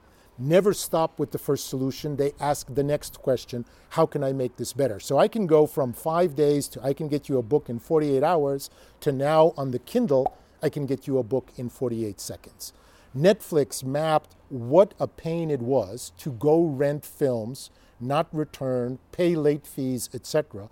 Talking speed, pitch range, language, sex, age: 190 wpm, 120-155 Hz, Russian, male, 50-69